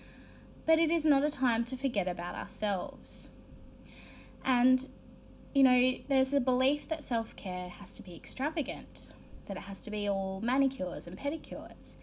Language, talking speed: English, 155 wpm